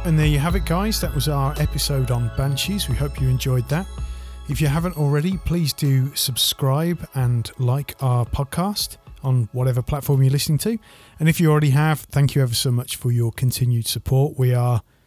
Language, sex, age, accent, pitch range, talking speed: English, male, 30-49, British, 120-145 Hz, 200 wpm